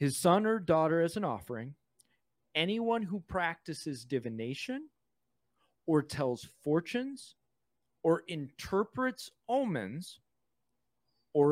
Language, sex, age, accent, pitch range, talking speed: English, male, 30-49, American, 130-180 Hz, 95 wpm